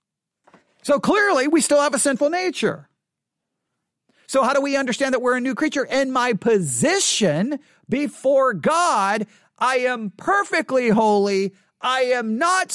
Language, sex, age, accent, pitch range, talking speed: English, male, 40-59, American, 195-260 Hz, 140 wpm